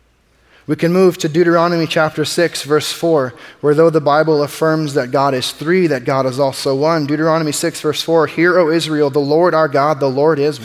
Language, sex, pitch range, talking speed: English, male, 115-150 Hz, 210 wpm